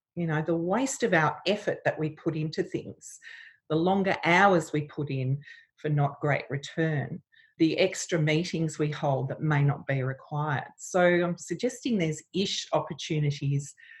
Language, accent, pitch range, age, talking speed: English, Australian, 145-190 Hz, 40-59, 165 wpm